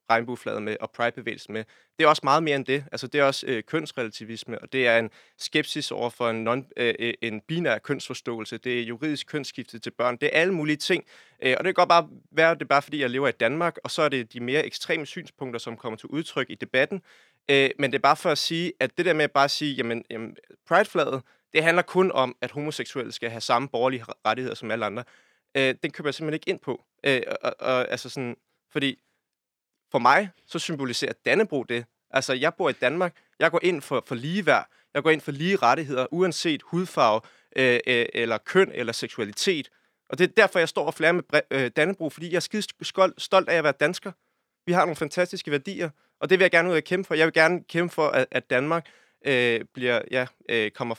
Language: Danish